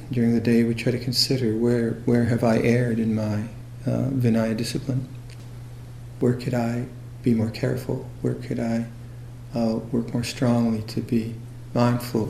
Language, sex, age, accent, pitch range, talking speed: English, male, 50-69, American, 115-120 Hz, 160 wpm